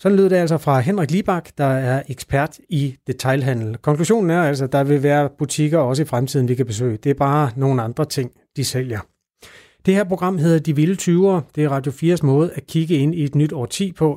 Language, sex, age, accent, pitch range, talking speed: Danish, male, 30-49, native, 130-165 Hz, 230 wpm